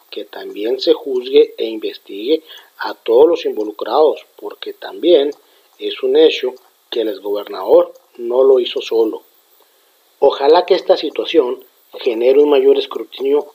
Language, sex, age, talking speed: Spanish, male, 40-59, 135 wpm